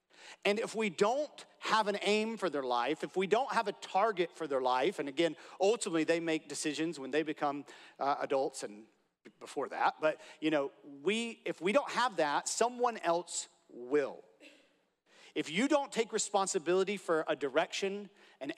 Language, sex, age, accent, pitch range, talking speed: English, male, 40-59, American, 155-220 Hz, 175 wpm